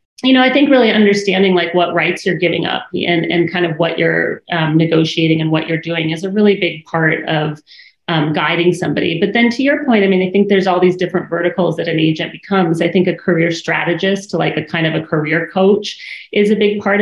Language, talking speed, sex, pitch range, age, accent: English, 235 wpm, female, 165-195 Hz, 30-49, American